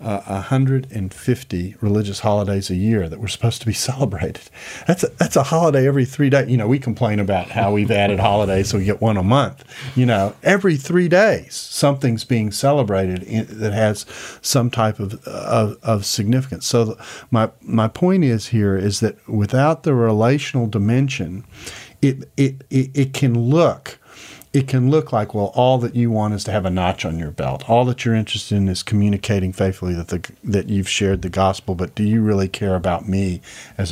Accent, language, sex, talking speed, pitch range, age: American, English, male, 200 wpm, 100-130 Hz, 40-59